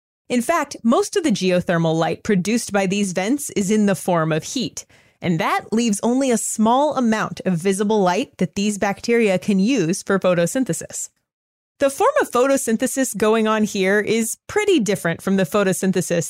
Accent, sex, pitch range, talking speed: American, female, 185-250 Hz, 175 wpm